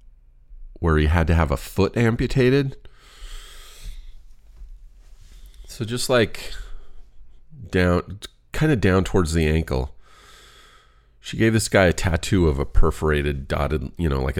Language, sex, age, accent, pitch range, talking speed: English, male, 40-59, American, 70-95 Hz, 130 wpm